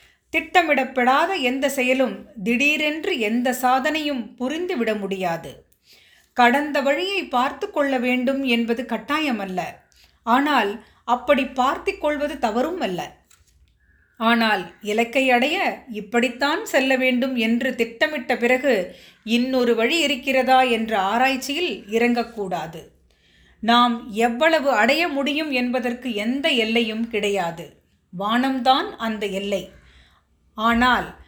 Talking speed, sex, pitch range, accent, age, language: 90 wpm, female, 225-280 Hz, native, 30-49, Tamil